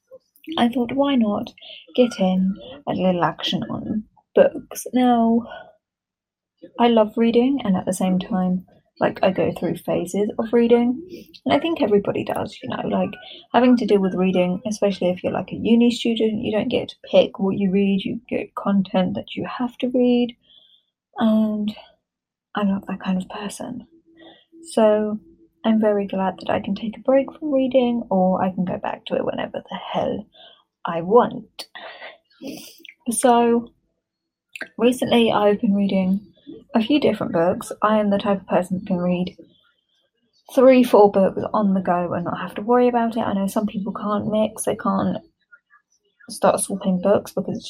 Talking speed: 175 wpm